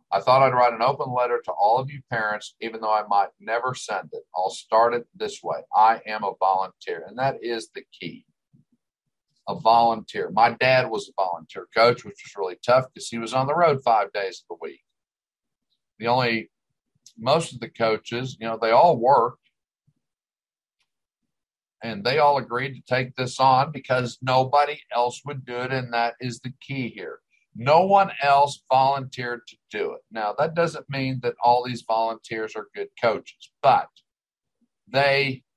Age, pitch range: 50-69, 115-140 Hz